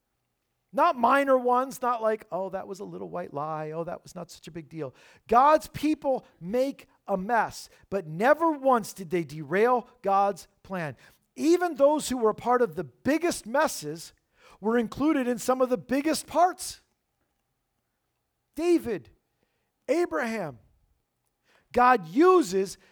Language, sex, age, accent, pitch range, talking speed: English, male, 50-69, American, 185-265 Hz, 140 wpm